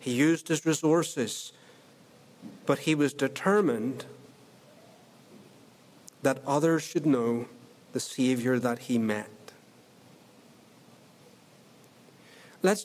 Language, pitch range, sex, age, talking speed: English, 135-185 Hz, male, 60-79, 85 wpm